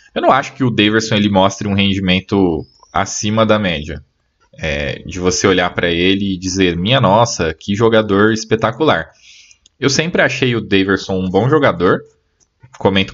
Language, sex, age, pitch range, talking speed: Portuguese, male, 20-39, 95-125 Hz, 160 wpm